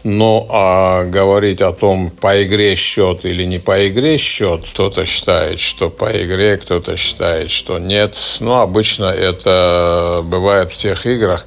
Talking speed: 155 wpm